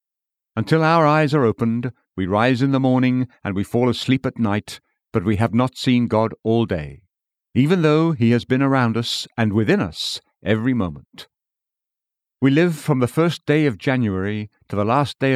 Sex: male